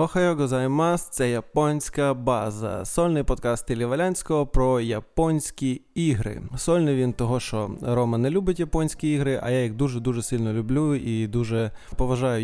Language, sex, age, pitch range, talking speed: Ukrainian, male, 20-39, 120-155 Hz, 140 wpm